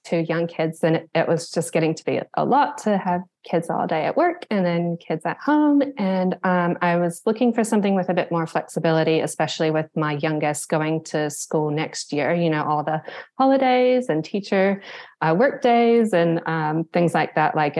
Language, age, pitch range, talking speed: English, 20-39, 155-195 Hz, 205 wpm